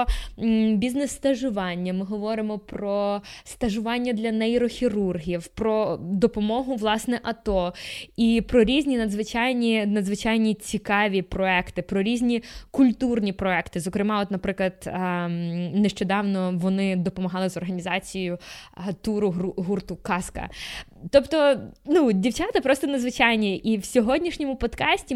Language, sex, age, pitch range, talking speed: Ukrainian, female, 20-39, 195-245 Hz, 105 wpm